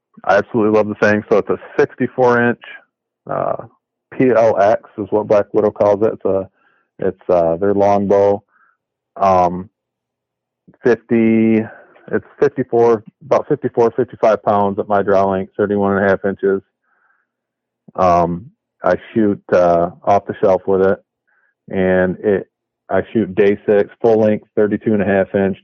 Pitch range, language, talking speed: 90-105 Hz, English, 145 wpm